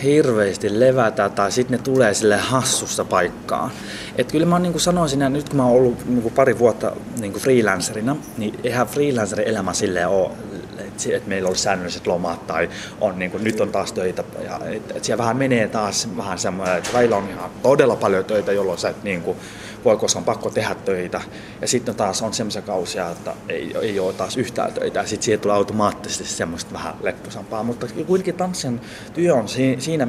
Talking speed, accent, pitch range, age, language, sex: 190 wpm, native, 105-125 Hz, 20-39, Finnish, male